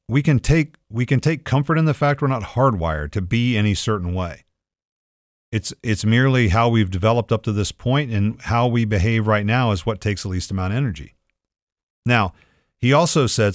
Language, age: English, 40-59